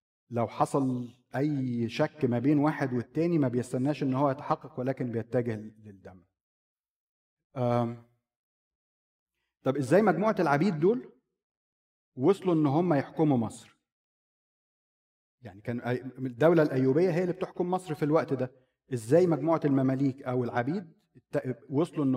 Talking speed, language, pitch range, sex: 120 wpm, Arabic, 120-150 Hz, male